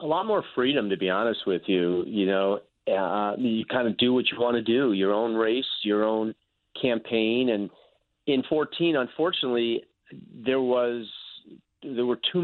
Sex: male